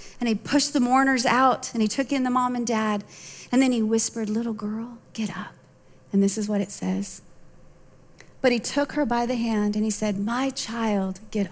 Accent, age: American, 40-59